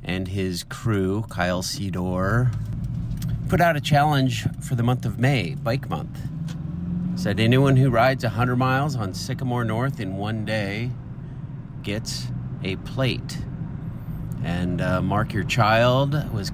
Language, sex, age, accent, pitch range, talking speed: English, male, 40-59, American, 110-140 Hz, 135 wpm